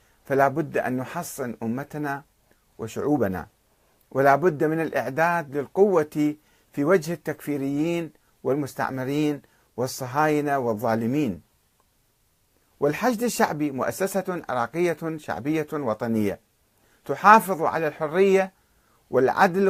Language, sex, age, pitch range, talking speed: Arabic, male, 50-69, 125-175 Hz, 80 wpm